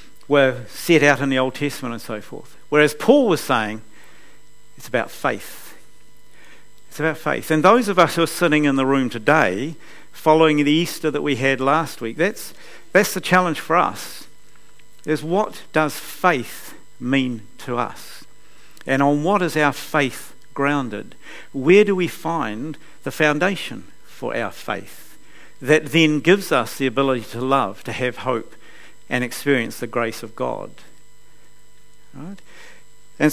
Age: 50-69